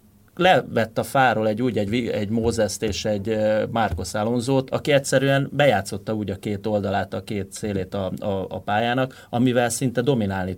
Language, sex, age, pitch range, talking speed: Hungarian, male, 30-49, 100-120 Hz, 160 wpm